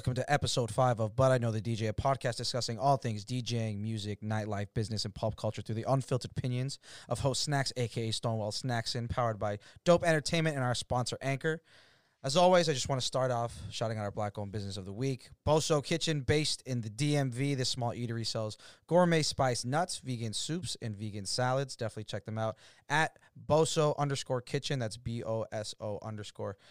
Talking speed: 190 wpm